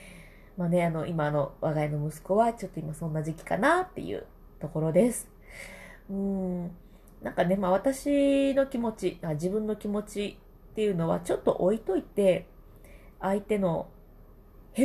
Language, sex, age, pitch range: Japanese, female, 20-39, 170-215 Hz